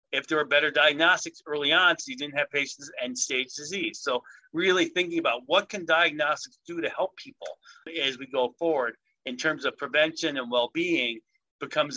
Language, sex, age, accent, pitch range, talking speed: English, male, 40-59, American, 140-195 Hz, 190 wpm